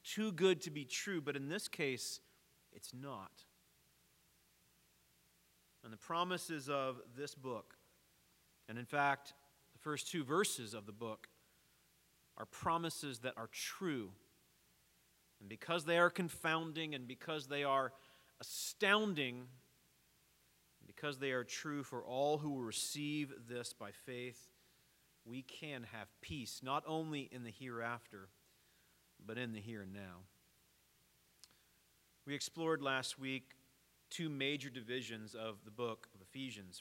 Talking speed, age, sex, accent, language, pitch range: 135 wpm, 40-59, male, American, English, 110-150 Hz